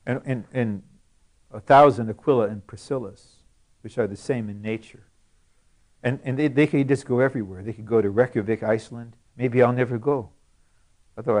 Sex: male